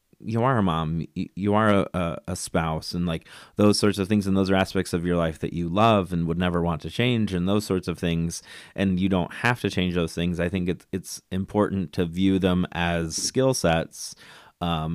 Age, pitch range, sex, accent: 30-49, 90-105 Hz, male, American